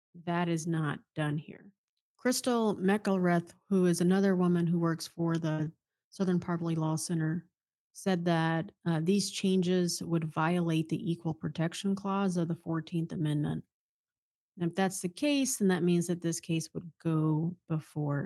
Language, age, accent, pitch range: English, 40-59, American, 160-190 Hz